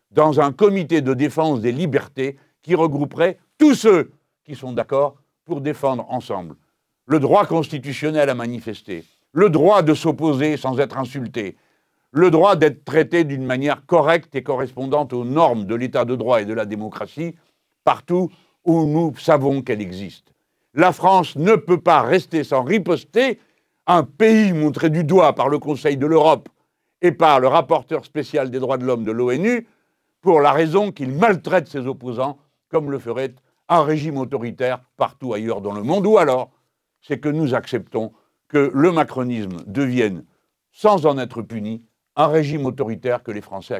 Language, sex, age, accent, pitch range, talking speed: French, male, 60-79, French, 130-170 Hz, 165 wpm